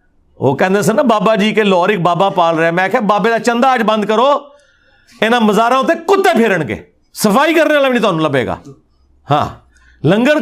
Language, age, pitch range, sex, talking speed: Urdu, 50-69, 135-215 Hz, male, 200 wpm